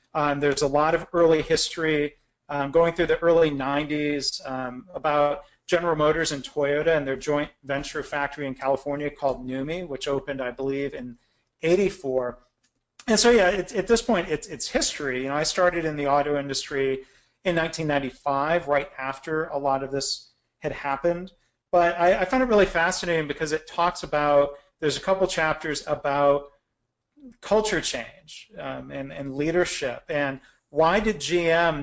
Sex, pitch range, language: male, 135-165 Hz, English